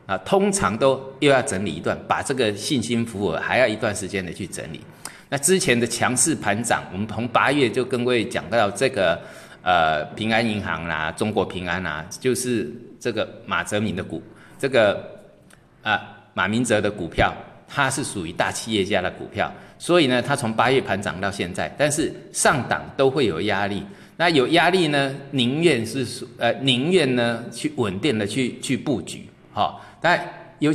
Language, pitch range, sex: Chinese, 110-155 Hz, male